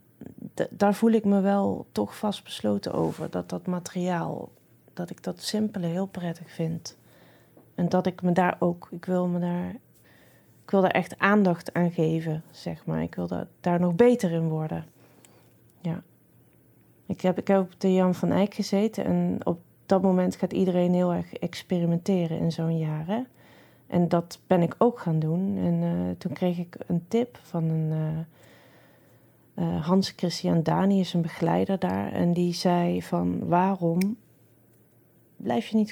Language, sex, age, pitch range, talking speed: Dutch, female, 30-49, 165-195 Hz, 170 wpm